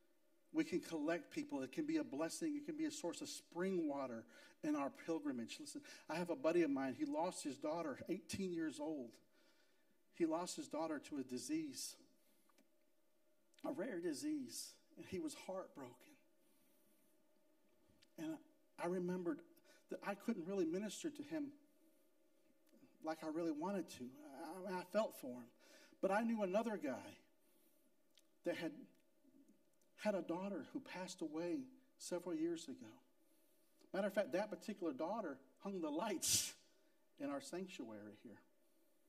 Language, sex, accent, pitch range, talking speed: English, male, American, 200-305 Hz, 145 wpm